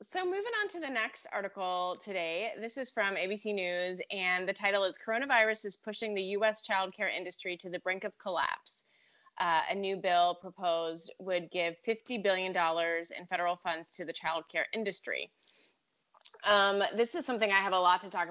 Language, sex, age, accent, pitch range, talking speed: English, female, 20-39, American, 175-210 Hz, 180 wpm